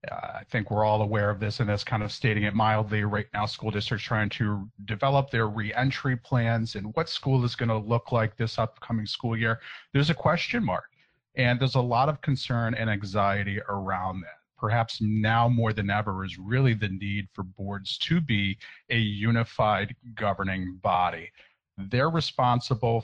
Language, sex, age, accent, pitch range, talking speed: English, male, 40-59, American, 105-125 Hz, 185 wpm